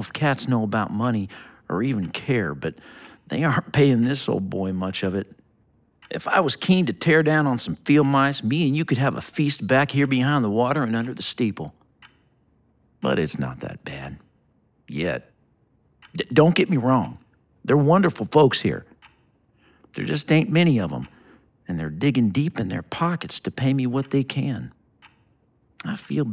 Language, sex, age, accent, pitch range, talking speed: English, male, 50-69, American, 110-155 Hz, 185 wpm